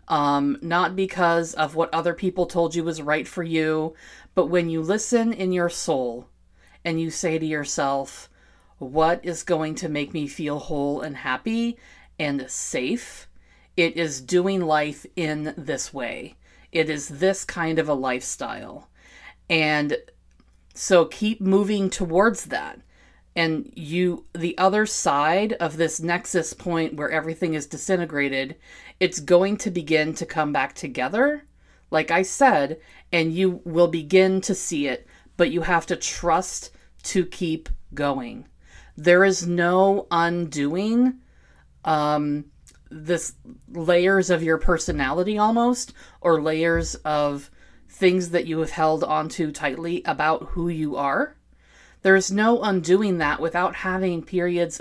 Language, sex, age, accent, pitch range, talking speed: English, female, 40-59, American, 150-185 Hz, 140 wpm